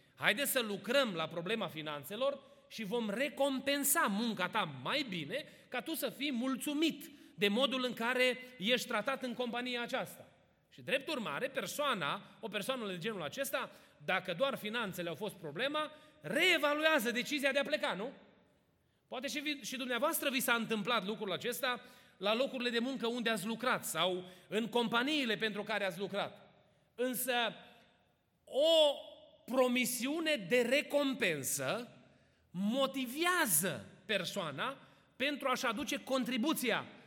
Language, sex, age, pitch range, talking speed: Romanian, male, 30-49, 210-275 Hz, 135 wpm